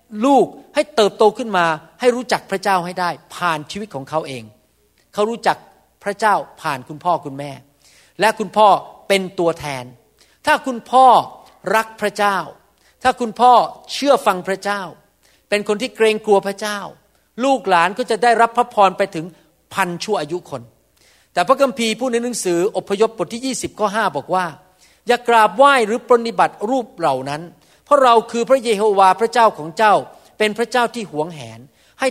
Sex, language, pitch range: male, Thai, 170-235 Hz